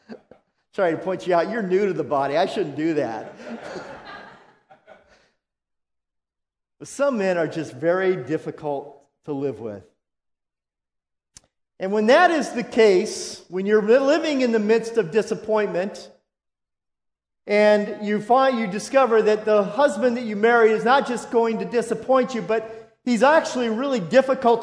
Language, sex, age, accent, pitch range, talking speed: English, male, 50-69, American, 190-250 Hz, 145 wpm